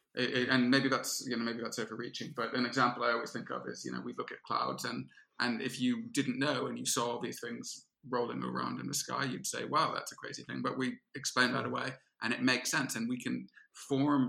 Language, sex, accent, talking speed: English, male, British, 245 wpm